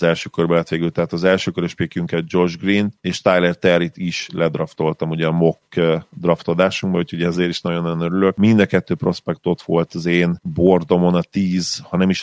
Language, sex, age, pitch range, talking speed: Hungarian, male, 30-49, 80-90 Hz, 175 wpm